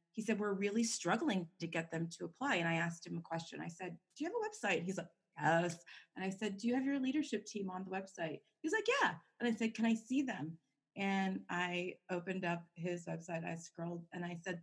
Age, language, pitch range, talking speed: 30-49, English, 165-205 Hz, 240 wpm